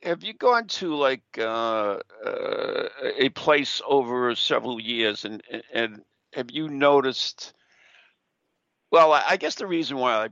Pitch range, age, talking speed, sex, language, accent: 120-170 Hz, 60-79, 140 wpm, male, English, American